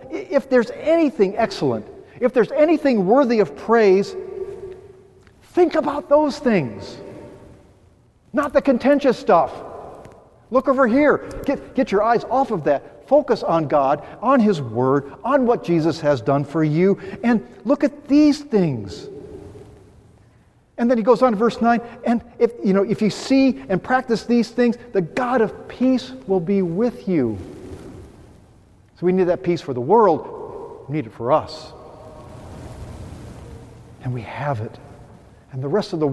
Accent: American